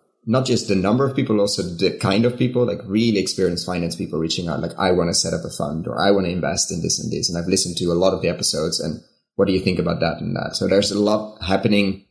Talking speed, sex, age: 285 wpm, male, 30-49